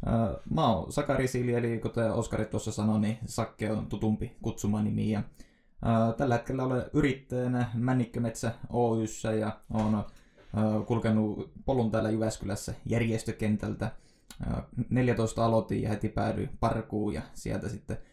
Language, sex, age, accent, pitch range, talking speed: Finnish, male, 20-39, native, 110-120 Hz, 125 wpm